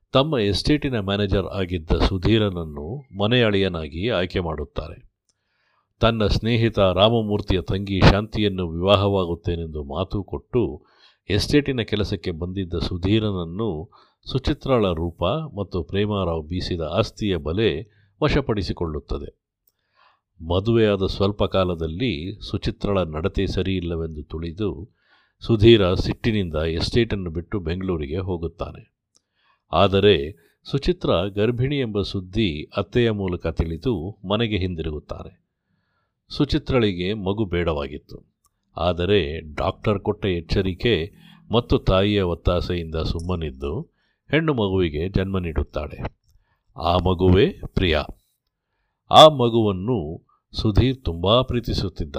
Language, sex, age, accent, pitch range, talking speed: Kannada, male, 50-69, native, 85-110 Hz, 85 wpm